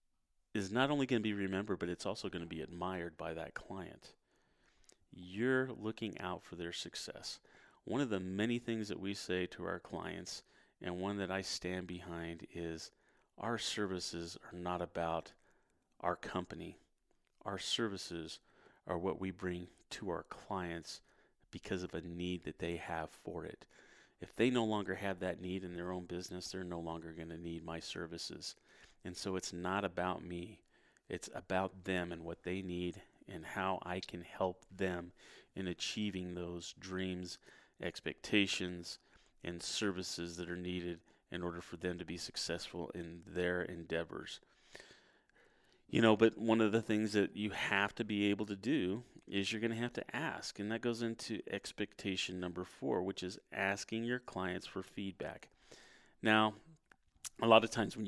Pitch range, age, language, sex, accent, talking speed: 85-105 Hz, 30-49, English, male, American, 170 wpm